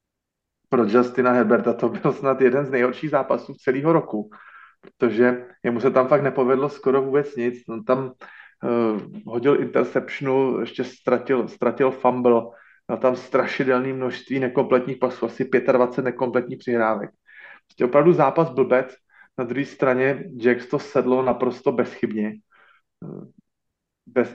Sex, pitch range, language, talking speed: male, 120-140 Hz, Slovak, 130 wpm